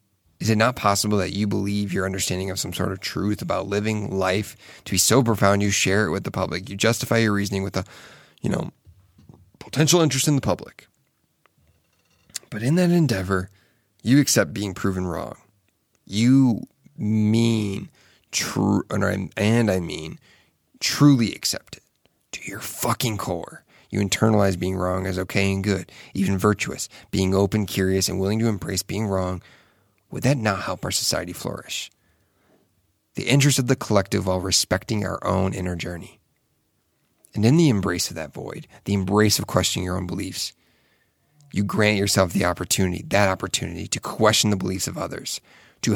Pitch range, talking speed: 95-115 Hz, 165 wpm